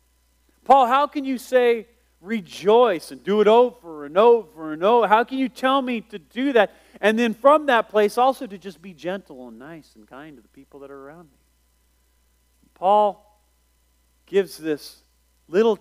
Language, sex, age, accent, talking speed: English, male, 40-59, American, 180 wpm